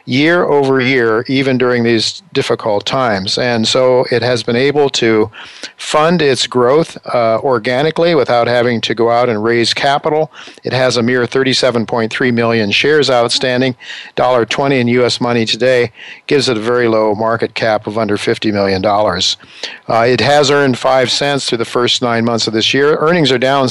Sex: male